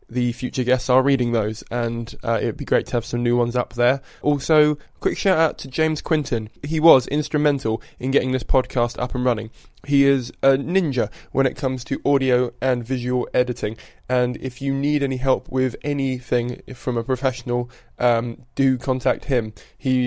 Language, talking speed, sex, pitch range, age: English, 190 wpm, male, 120-140 Hz, 20-39